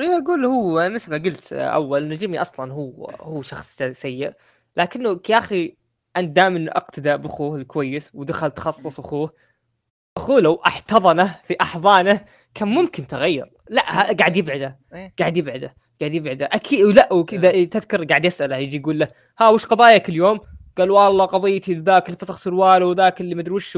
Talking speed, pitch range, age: 160 wpm, 145-190 Hz, 20-39